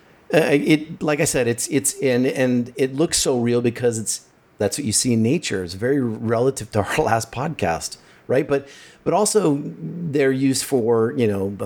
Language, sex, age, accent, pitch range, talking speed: English, male, 40-59, American, 100-120 Hz, 190 wpm